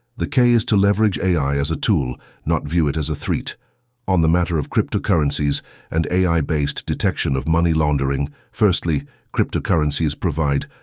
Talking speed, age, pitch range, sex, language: 160 wpm, 50-69, 75-115 Hz, male, German